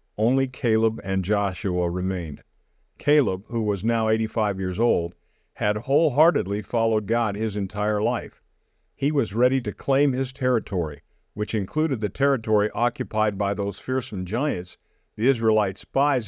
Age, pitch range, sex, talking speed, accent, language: 50-69, 100-130 Hz, male, 140 wpm, American, English